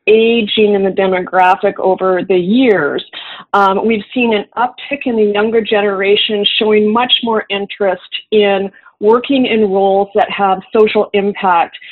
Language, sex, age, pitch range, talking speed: English, female, 40-59, 190-225 Hz, 140 wpm